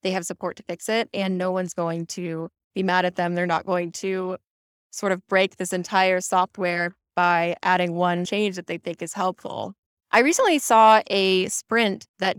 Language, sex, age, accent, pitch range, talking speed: English, female, 10-29, American, 175-205 Hz, 195 wpm